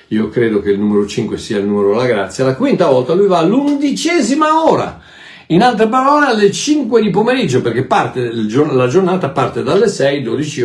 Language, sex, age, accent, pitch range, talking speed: Italian, male, 60-79, native, 110-175 Hz, 185 wpm